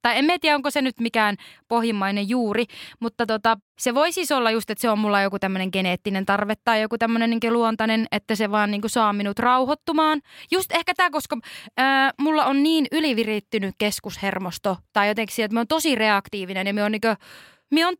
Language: Finnish